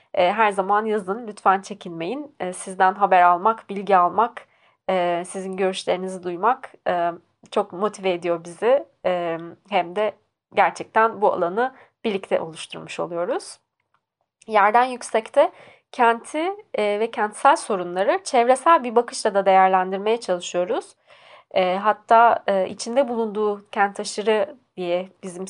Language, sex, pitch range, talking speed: Turkish, female, 190-230 Hz, 105 wpm